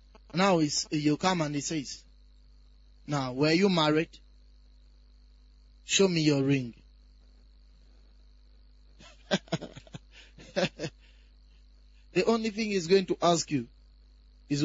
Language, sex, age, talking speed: English, male, 30-49, 100 wpm